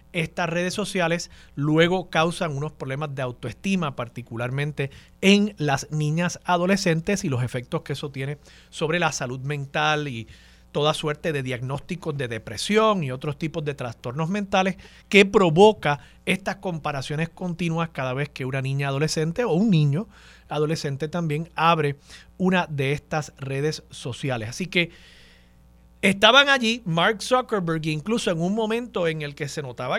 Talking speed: 150 wpm